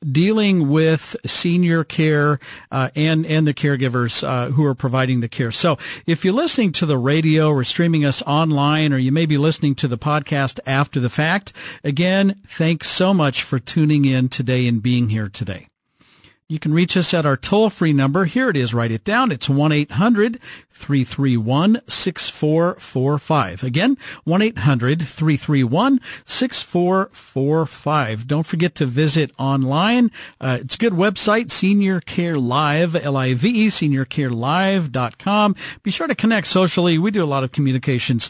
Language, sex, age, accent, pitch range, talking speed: English, male, 50-69, American, 135-175 Hz, 145 wpm